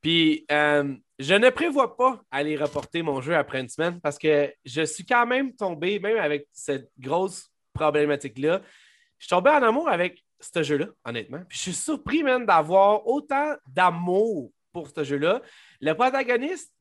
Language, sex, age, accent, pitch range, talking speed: French, male, 30-49, Canadian, 150-215 Hz, 170 wpm